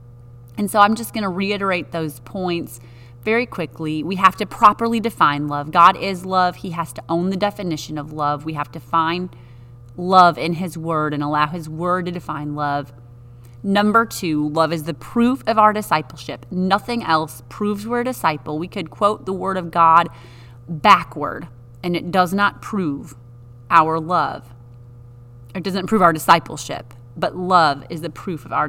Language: English